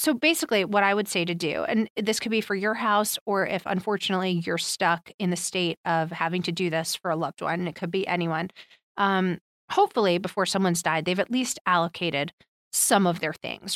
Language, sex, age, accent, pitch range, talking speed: English, female, 30-49, American, 170-210 Hz, 215 wpm